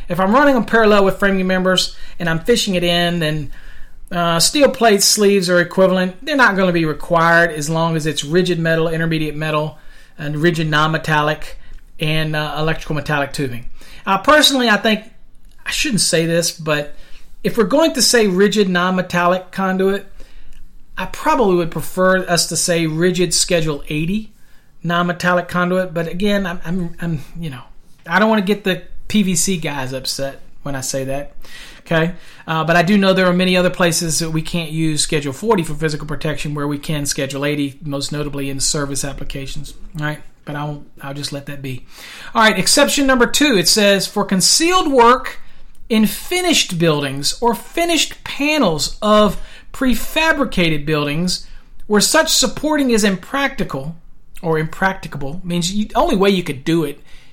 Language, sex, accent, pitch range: English, male, American, 150-205 Hz